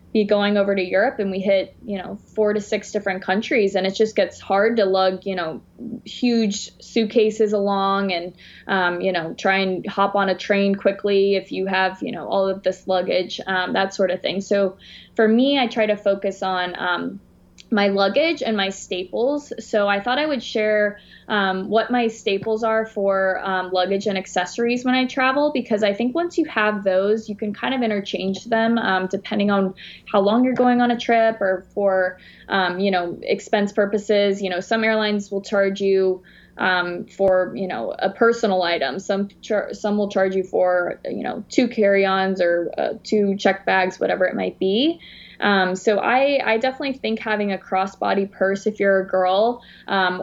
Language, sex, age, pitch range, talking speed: English, female, 20-39, 190-220 Hz, 195 wpm